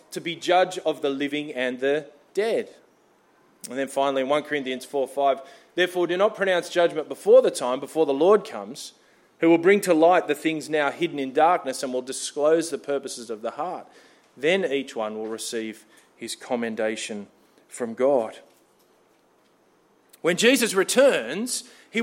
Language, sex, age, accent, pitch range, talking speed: English, male, 20-39, Australian, 155-225 Hz, 165 wpm